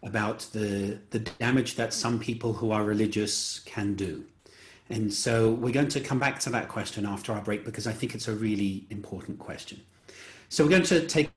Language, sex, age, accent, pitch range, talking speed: English, male, 40-59, British, 105-140 Hz, 200 wpm